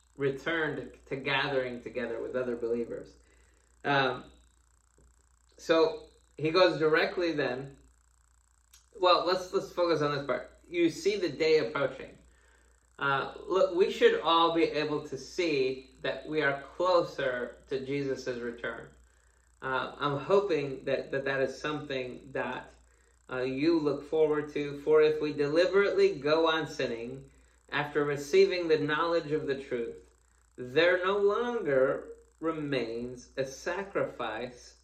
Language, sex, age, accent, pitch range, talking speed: English, male, 20-39, American, 120-160 Hz, 130 wpm